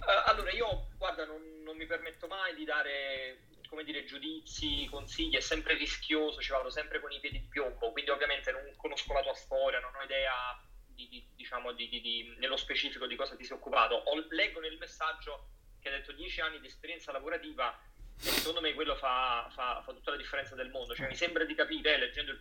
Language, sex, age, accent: Italian, male, 30-49, native